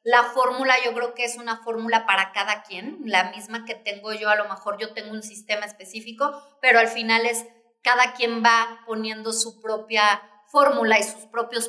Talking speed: 195 wpm